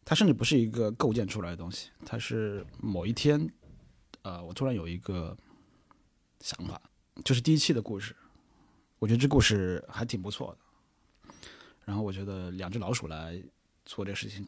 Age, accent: 20-39, native